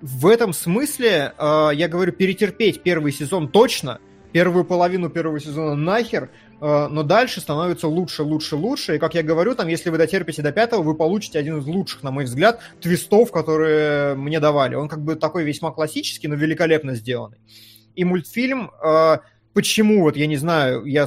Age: 20-39